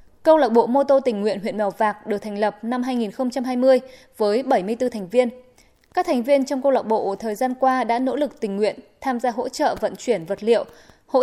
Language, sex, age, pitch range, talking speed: Vietnamese, female, 10-29, 215-265 Hz, 230 wpm